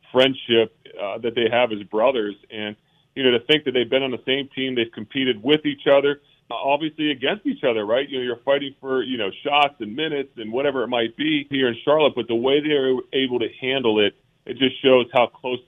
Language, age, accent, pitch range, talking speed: English, 40-59, American, 115-135 Hz, 235 wpm